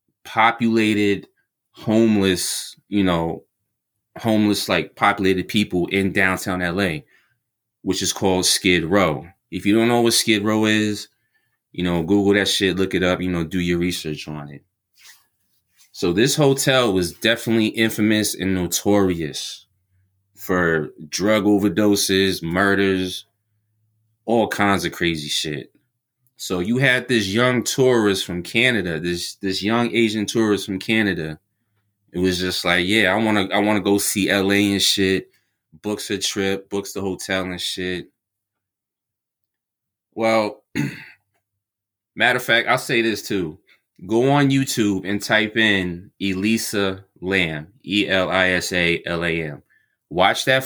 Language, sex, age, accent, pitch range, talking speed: English, male, 20-39, American, 90-110 Hz, 135 wpm